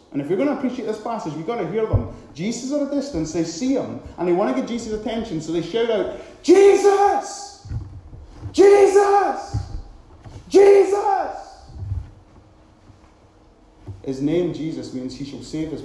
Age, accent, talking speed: 30-49, British, 165 wpm